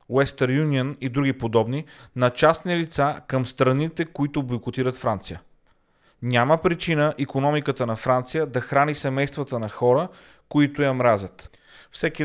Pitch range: 120-150 Hz